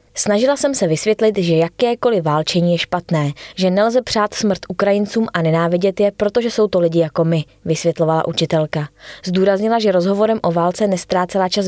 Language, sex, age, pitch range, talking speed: Czech, female, 20-39, 160-215 Hz, 165 wpm